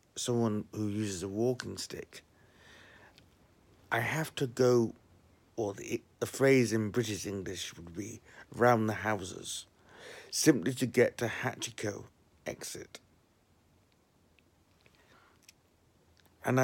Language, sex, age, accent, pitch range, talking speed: English, male, 60-79, British, 100-120 Hz, 105 wpm